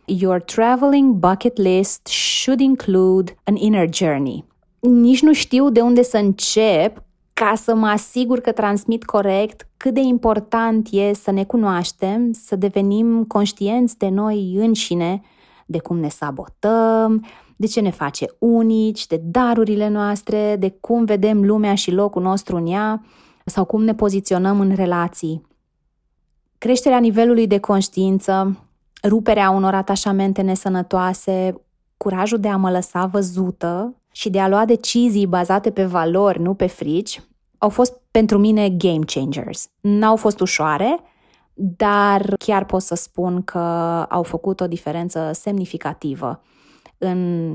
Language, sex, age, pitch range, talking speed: Romanian, female, 20-39, 185-225 Hz, 140 wpm